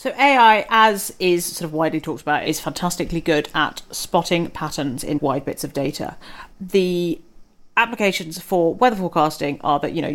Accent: British